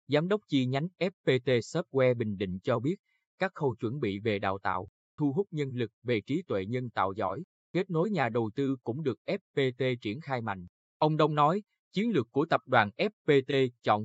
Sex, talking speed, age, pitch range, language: male, 205 wpm, 20-39, 115-145 Hz, Vietnamese